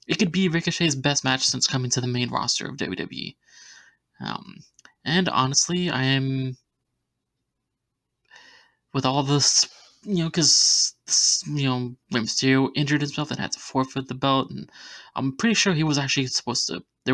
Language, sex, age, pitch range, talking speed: English, male, 20-39, 130-150 Hz, 160 wpm